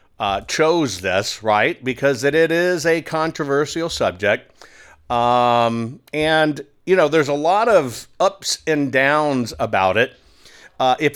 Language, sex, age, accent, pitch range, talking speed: English, male, 50-69, American, 120-160 Hz, 140 wpm